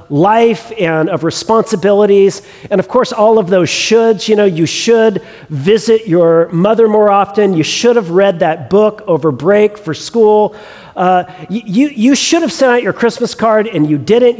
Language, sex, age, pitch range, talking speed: English, male, 40-59, 175-220 Hz, 185 wpm